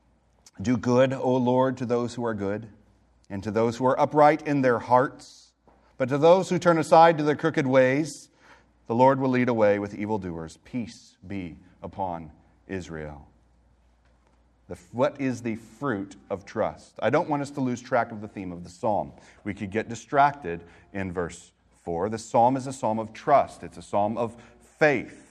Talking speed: 185 wpm